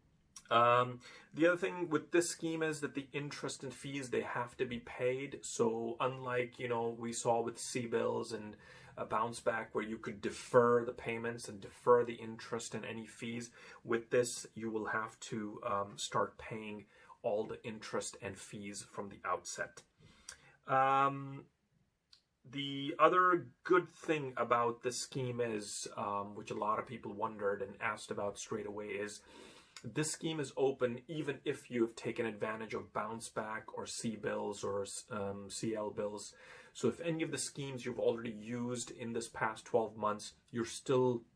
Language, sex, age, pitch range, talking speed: English, male, 30-49, 110-135 Hz, 170 wpm